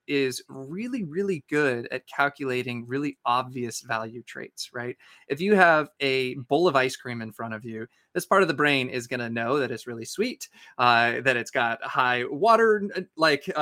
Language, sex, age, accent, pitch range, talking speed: English, male, 20-39, American, 125-155 Hz, 185 wpm